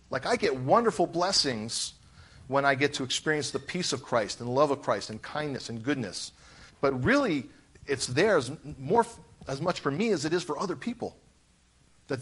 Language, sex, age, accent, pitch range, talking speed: English, male, 40-59, American, 125-185 Hz, 185 wpm